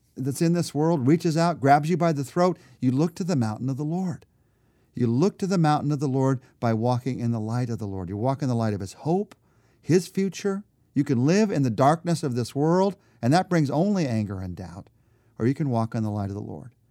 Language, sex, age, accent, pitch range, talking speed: English, male, 50-69, American, 110-145 Hz, 250 wpm